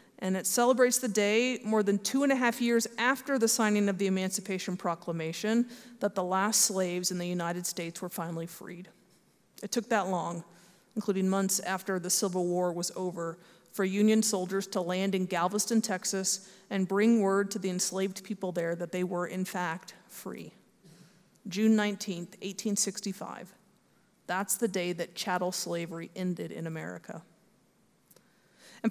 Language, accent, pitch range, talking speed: English, American, 185-235 Hz, 160 wpm